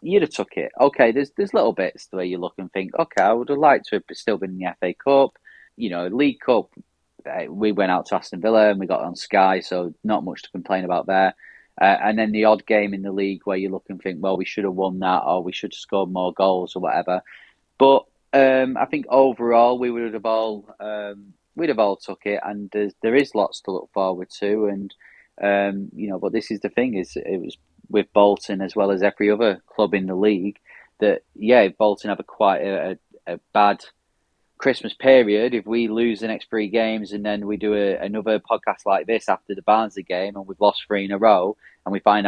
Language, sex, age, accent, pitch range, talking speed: English, male, 30-49, British, 95-110 Hz, 235 wpm